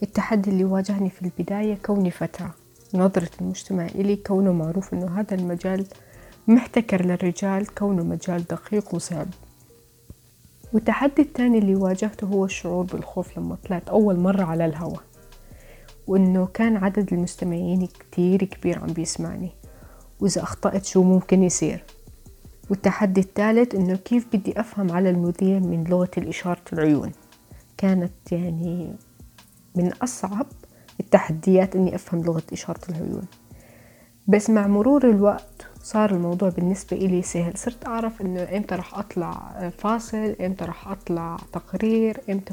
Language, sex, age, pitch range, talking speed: Arabic, female, 20-39, 175-200 Hz, 125 wpm